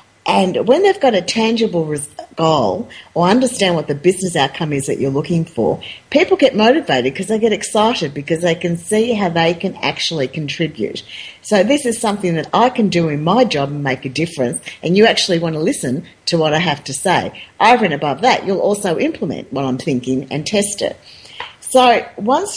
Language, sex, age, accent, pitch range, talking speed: English, female, 50-69, Australian, 145-205 Hz, 200 wpm